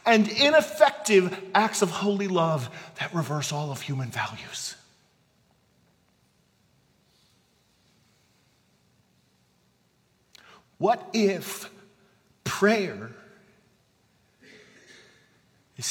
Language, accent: English, American